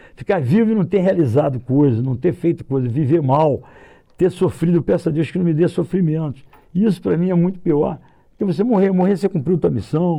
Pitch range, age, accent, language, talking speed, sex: 130-175 Hz, 60-79, Brazilian, Portuguese, 220 wpm, male